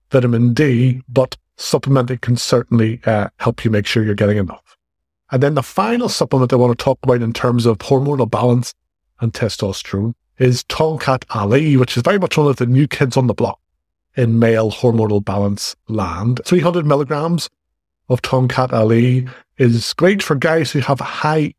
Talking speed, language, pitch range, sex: 175 wpm, English, 115-140 Hz, male